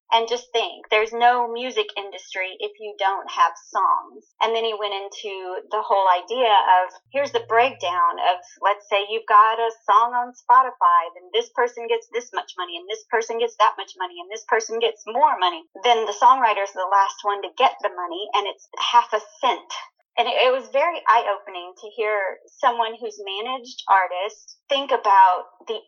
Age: 30-49